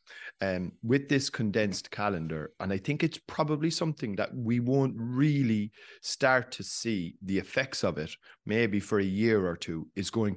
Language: English